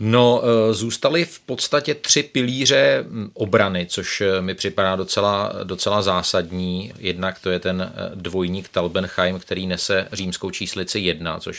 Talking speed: 130 wpm